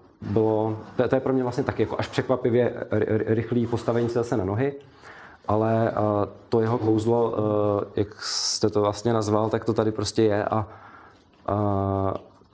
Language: Czech